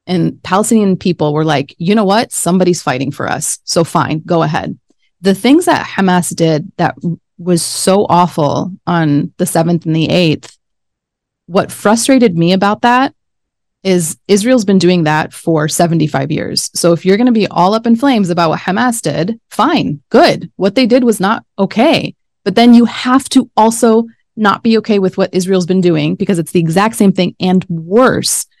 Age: 30-49